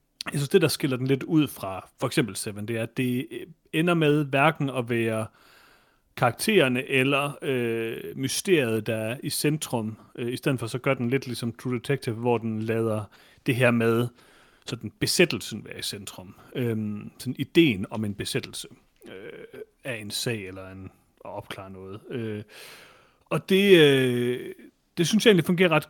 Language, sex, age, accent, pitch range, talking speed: Danish, male, 40-59, native, 115-145 Hz, 180 wpm